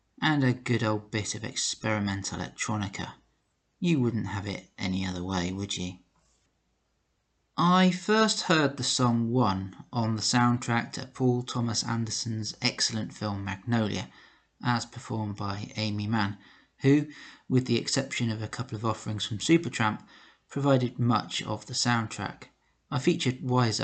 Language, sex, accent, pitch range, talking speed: English, male, British, 105-130 Hz, 145 wpm